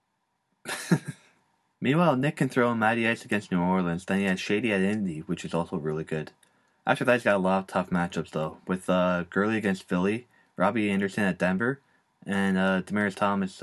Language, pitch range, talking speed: English, 95-120 Hz, 195 wpm